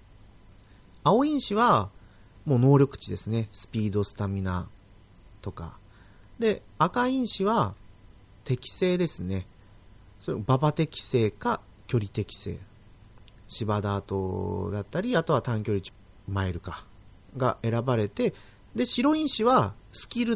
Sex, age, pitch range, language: male, 40-59, 100-145 Hz, Japanese